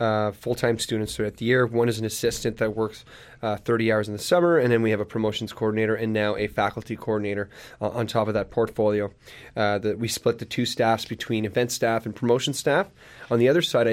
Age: 20-39